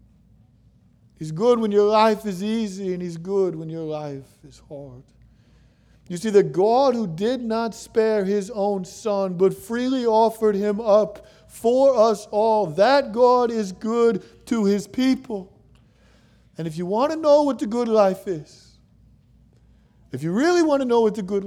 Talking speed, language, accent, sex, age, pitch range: 170 wpm, English, American, male, 50-69, 165-230 Hz